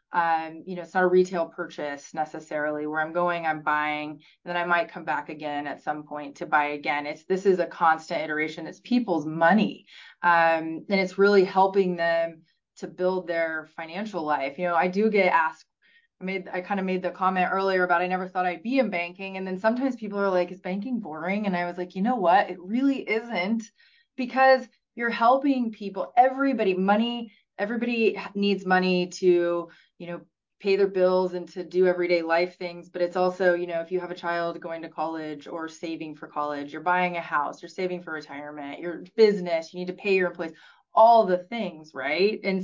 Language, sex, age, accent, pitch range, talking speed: English, female, 20-39, American, 165-195 Hz, 210 wpm